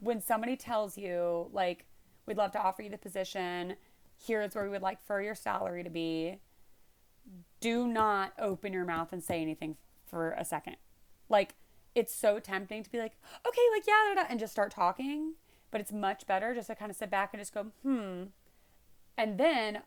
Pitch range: 175-220 Hz